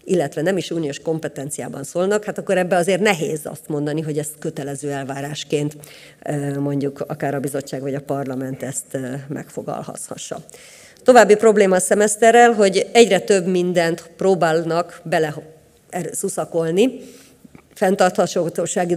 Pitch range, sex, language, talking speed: 150-185 Hz, female, Hungarian, 120 wpm